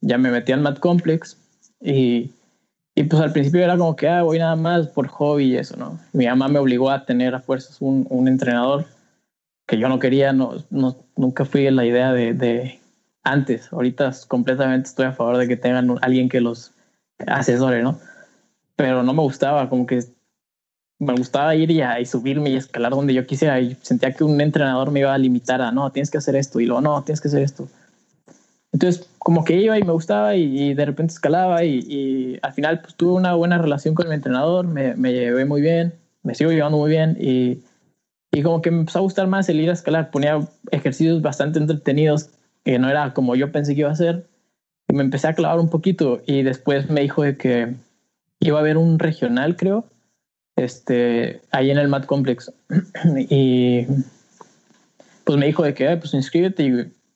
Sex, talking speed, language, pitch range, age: male, 205 wpm, Spanish, 130-165 Hz, 20-39